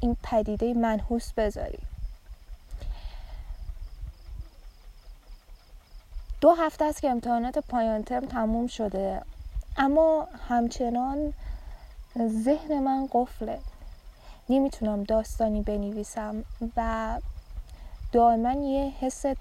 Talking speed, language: 75 wpm, Persian